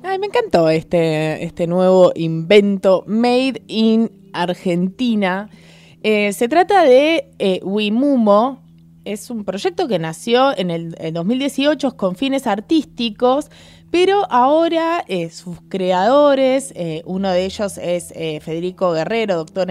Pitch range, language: 165-255 Hz, Spanish